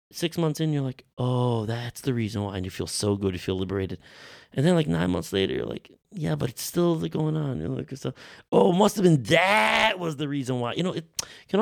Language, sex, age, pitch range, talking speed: English, male, 30-49, 110-165 Hz, 245 wpm